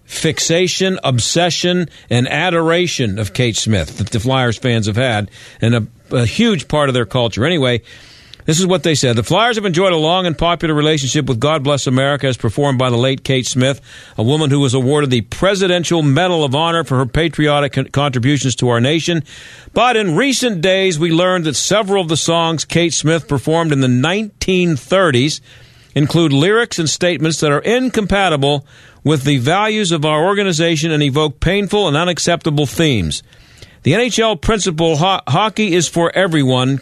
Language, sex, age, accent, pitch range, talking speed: English, male, 50-69, American, 135-180 Hz, 175 wpm